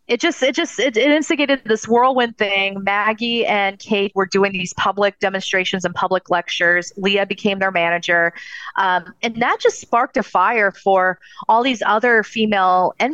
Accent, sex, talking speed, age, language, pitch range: American, female, 175 wpm, 30-49, English, 180-235 Hz